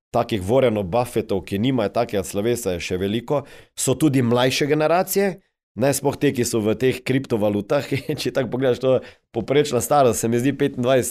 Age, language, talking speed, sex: 30-49, English, 185 wpm, male